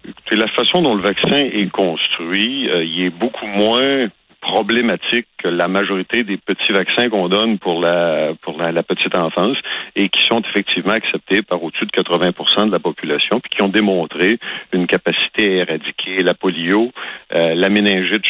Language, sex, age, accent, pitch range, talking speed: French, male, 50-69, French, 90-110 Hz, 175 wpm